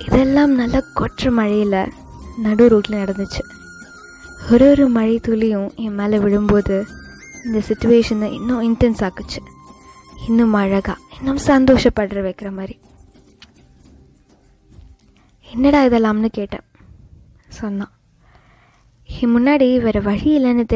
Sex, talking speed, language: female, 95 wpm, Tamil